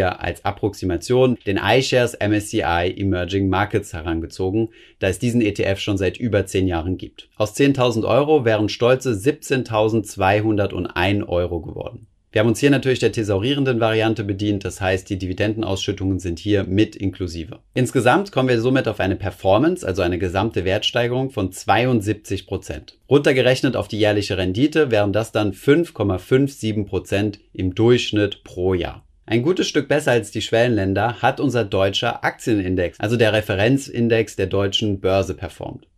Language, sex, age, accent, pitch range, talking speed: German, male, 30-49, German, 95-120 Hz, 145 wpm